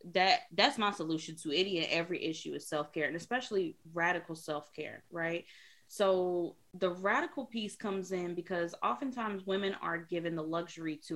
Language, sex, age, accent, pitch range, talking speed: English, female, 20-39, American, 160-200 Hz, 160 wpm